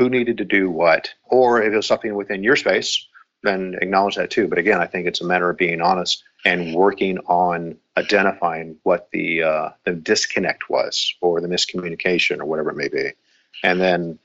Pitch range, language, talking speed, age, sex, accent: 85-110 Hz, English, 200 wpm, 50-69, male, American